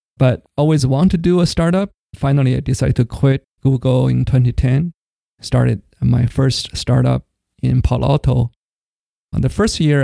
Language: English